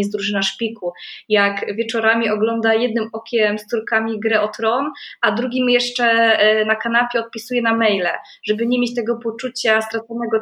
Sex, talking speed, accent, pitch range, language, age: female, 155 wpm, native, 220-260 Hz, Polish, 20-39